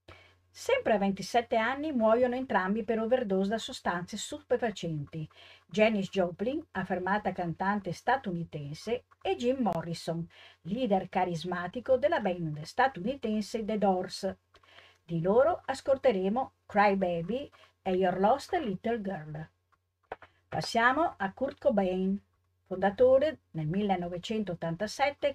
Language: Italian